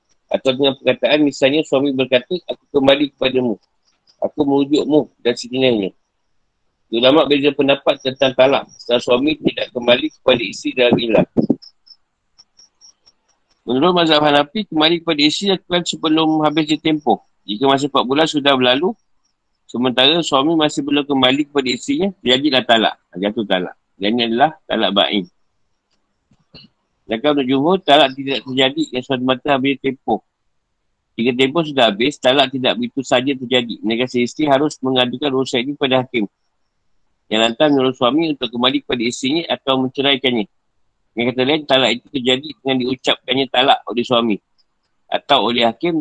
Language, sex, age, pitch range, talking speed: Malay, male, 50-69, 125-150 Hz, 145 wpm